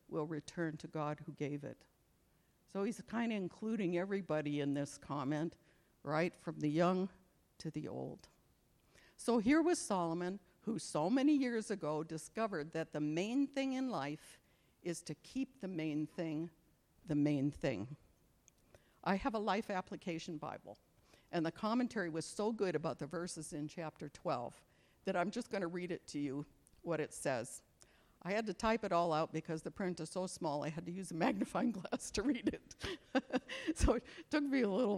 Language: English